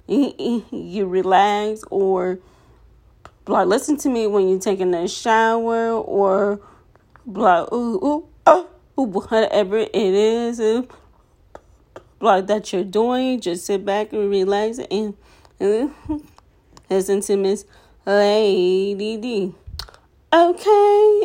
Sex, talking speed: female, 115 wpm